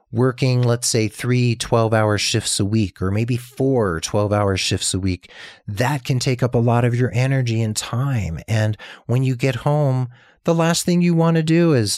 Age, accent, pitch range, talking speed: 40-59, American, 100-140 Hz, 195 wpm